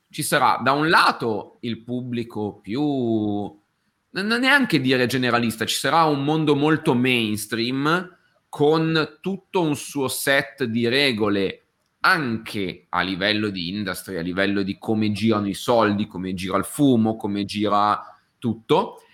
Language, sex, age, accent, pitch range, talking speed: Italian, male, 30-49, native, 105-150 Hz, 140 wpm